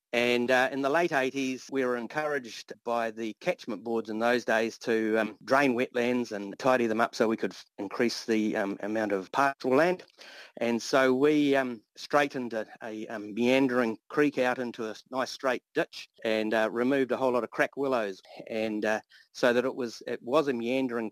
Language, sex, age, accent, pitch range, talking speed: English, male, 40-59, Australian, 110-130 Hz, 195 wpm